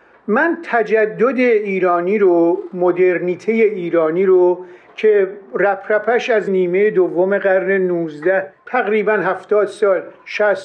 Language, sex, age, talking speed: Persian, male, 50-69, 105 wpm